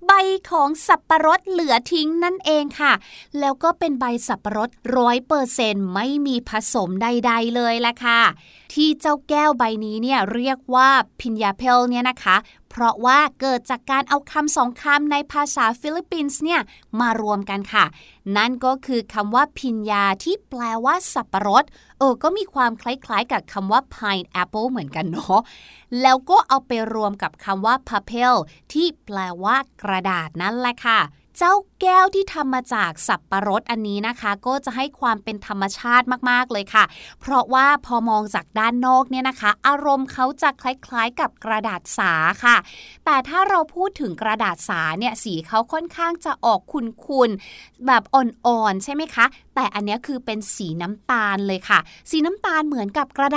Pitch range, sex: 215-285 Hz, female